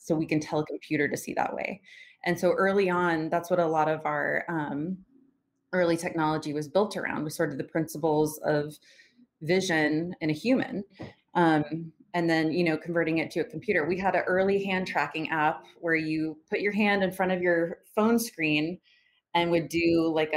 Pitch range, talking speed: 160-195 Hz, 200 wpm